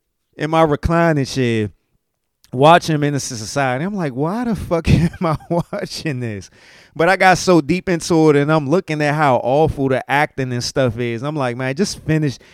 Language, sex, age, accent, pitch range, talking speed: English, male, 30-49, American, 115-155 Hz, 185 wpm